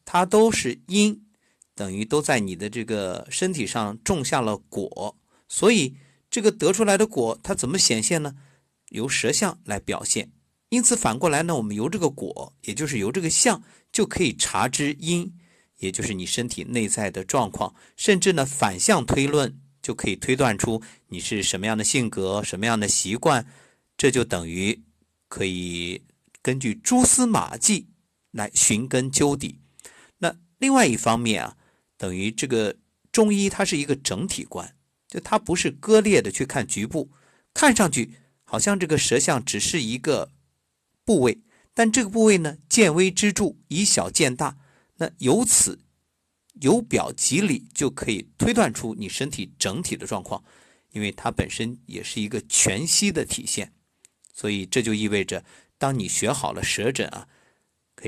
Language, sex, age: Chinese, male, 50-69